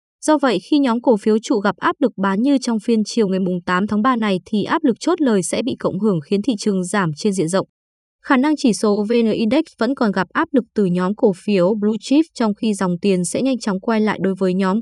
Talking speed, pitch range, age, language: 260 wpm, 190-250 Hz, 20-39, Vietnamese